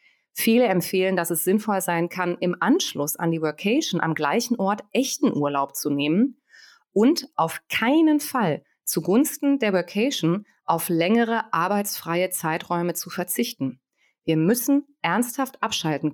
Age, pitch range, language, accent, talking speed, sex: 30-49, 160-215 Hz, German, German, 135 wpm, female